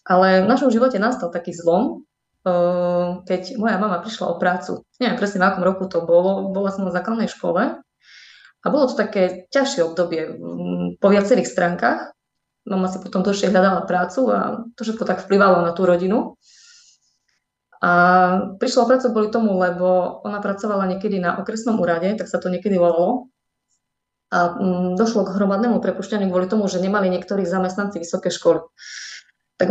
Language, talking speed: Slovak, 160 wpm